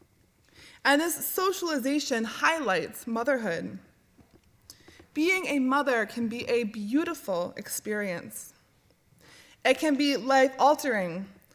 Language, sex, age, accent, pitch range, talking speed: English, female, 20-39, American, 195-280 Hz, 90 wpm